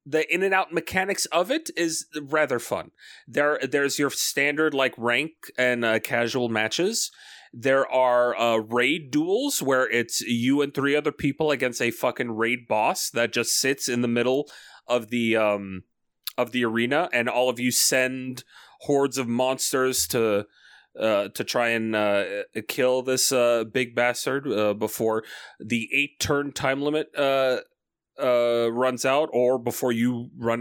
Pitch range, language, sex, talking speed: 115-140 Hz, English, male, 165 wpm